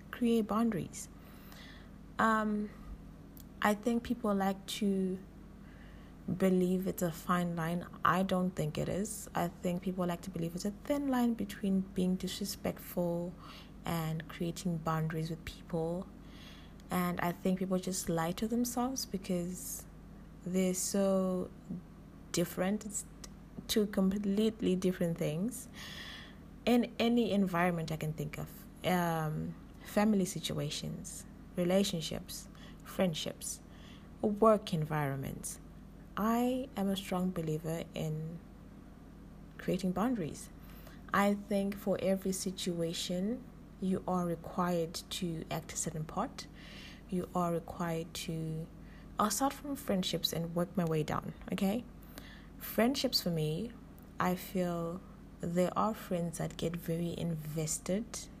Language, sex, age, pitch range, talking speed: English, female, 20-39, 170-205 Hz, 115 wpm